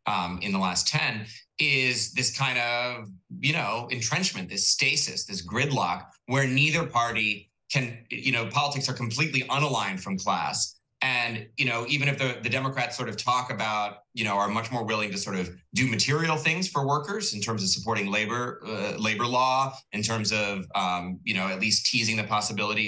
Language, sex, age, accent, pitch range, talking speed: English, male, 30-49, American, 110-135 Hz, 190 wpm